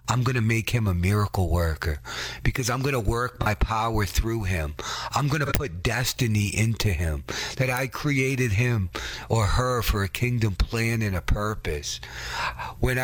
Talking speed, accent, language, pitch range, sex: 175 wpm, American, English, 100-125 Hz, male